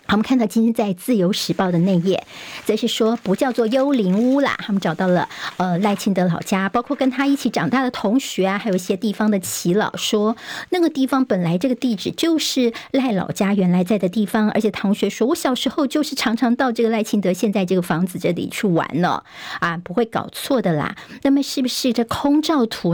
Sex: male